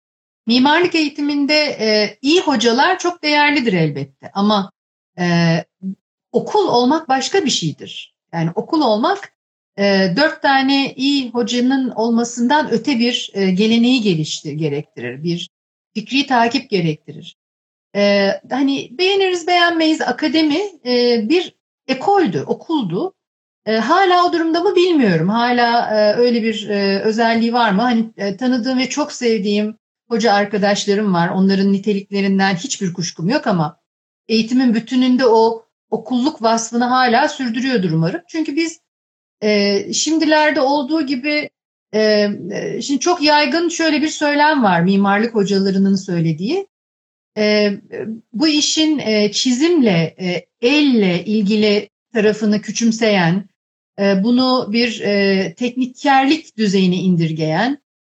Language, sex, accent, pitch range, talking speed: Turkish, female, native, 200-290 Hz, 120 wpm